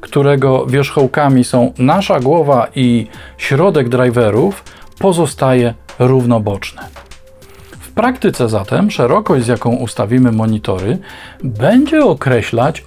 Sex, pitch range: male, 120-165 Hz